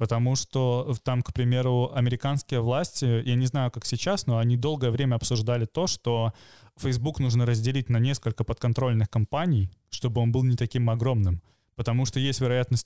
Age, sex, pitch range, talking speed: 20-39, male, 115-130 Hz, 170 wpm